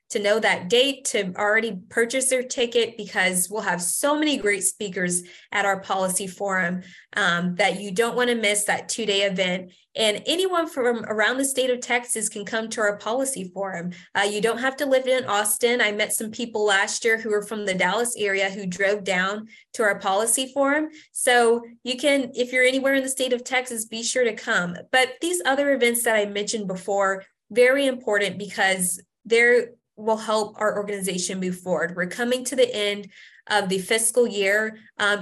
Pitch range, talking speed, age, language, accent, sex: 195-240 Hz, 195 wpm, 20-39, English, American, female